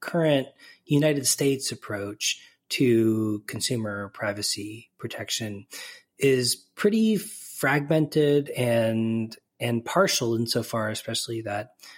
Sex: male